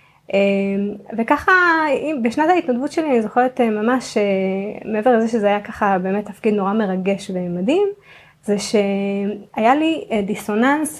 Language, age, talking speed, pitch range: Hebrew, 20-39, 115 wpm, 200-245 Hz